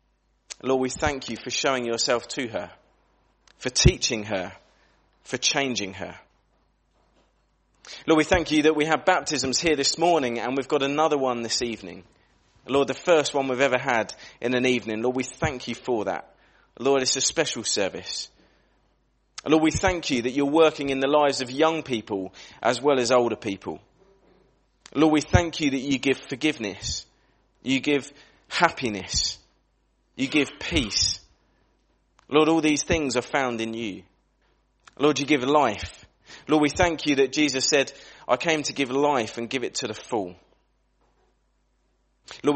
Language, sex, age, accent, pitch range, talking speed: English, male, 30-49, British, 125-150 Hz, 165 wpm